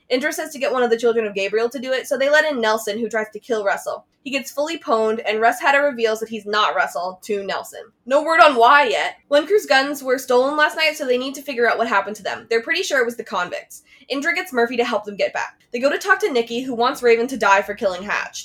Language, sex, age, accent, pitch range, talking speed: English, female, 20-39, American, 215-280 Hz, 285 wpm